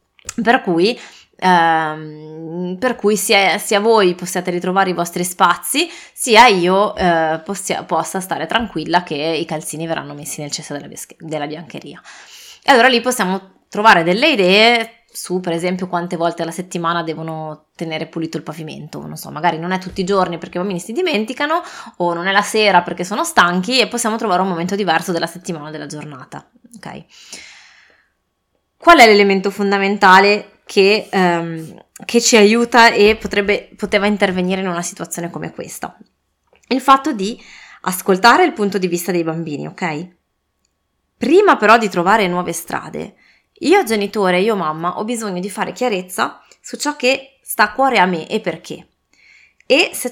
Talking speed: 165 wpm